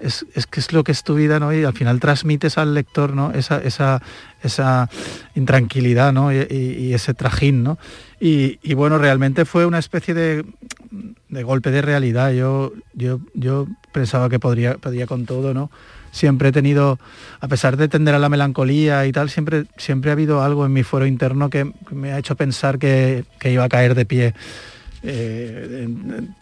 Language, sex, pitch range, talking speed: Spanish, male, 120-145 Hz, 195 wpm